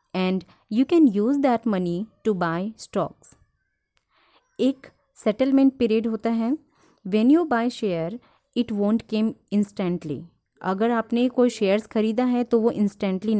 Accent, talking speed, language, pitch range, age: native, 140 wpm, Hindi, 190-245 Hz, 30-49